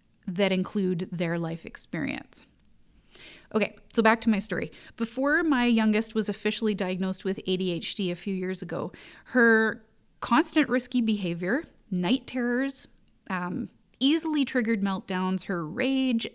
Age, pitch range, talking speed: 30-49, 190-245 Hz, 130 wpm